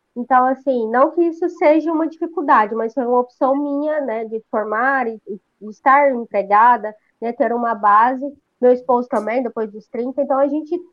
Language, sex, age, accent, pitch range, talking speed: Portuguese, female, 20-39, Brazilian, 225-285 Hz, 180 wpm